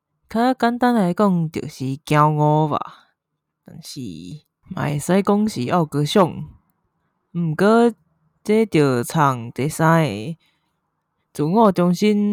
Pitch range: 150-180 Hz